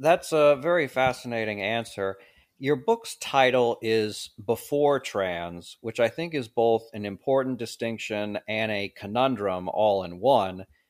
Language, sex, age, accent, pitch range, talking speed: English, male, 40-59, American, 100-125 Hz, 140 wpm